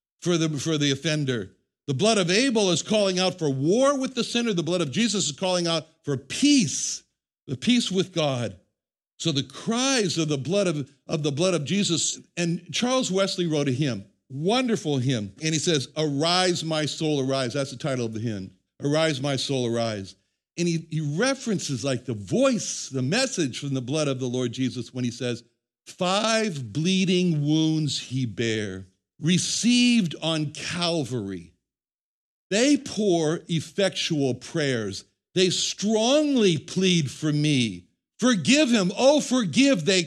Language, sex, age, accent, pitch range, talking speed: English, male, 60-79, American, 135-200 Hz, 155 wpm